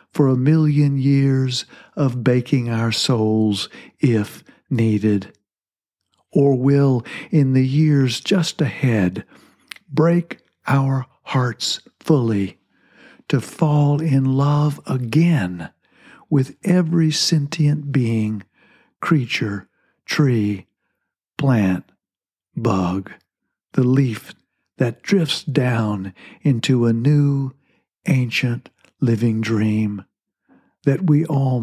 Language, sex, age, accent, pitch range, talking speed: English, male, 60-79, American, 110-145 Hz, 90 wpm